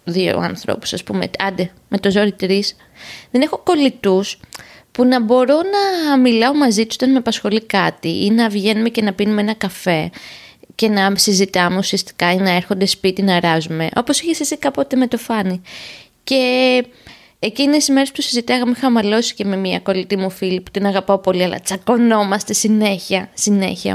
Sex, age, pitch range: female, 20-39, 190-255 Hz